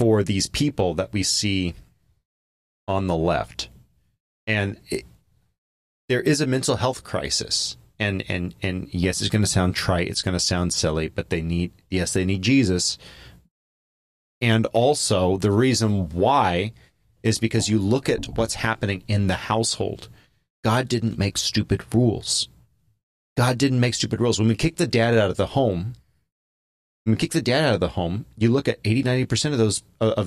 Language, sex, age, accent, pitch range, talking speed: English, male, 30-49, American, 95-125 Hz, 170 wpm